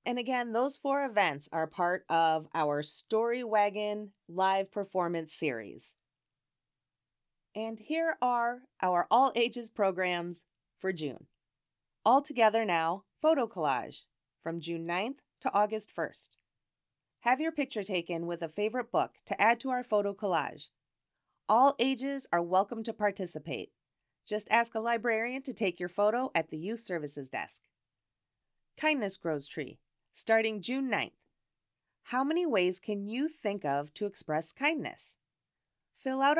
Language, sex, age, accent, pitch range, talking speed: English, female, 30-49, American, 160-240 Hz, 140 wpm